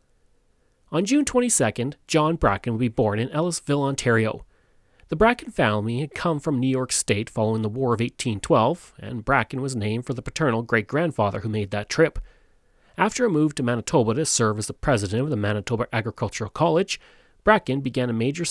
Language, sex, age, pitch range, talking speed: English, male, 30-49, 110-150 Hz, 180 wpm